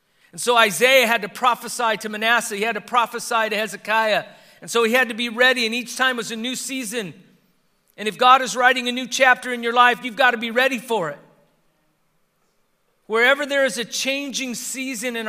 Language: English